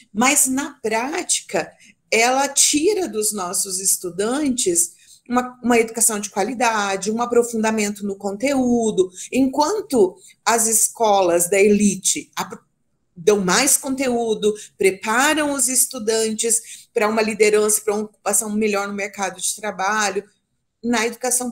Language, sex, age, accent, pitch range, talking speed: Portuguese, female, 40-59, Brazilian, 205-265 Hz, 115 wpm